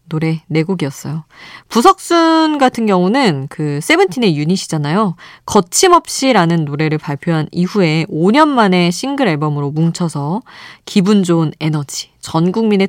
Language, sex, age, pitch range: Korean, female, 20-39, 160-250 Hz